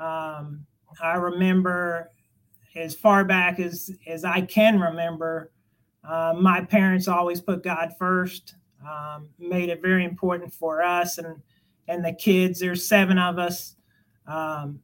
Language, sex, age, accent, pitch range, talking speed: English, male, 30-49, American, 165-190 Hz, 140 wpm